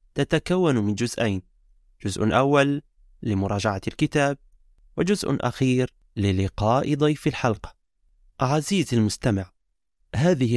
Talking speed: 85 wpm